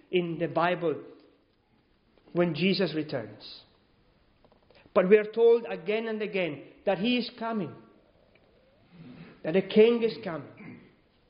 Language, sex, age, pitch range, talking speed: English, male, 40-59, 135-220 Hz, 115 wpm